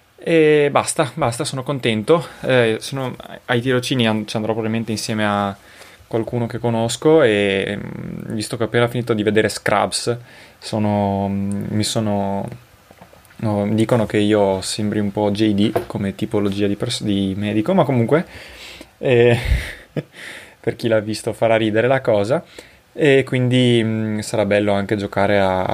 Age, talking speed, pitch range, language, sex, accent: 20-39, 150 wpm, 105-140 Hz, Italian, male, native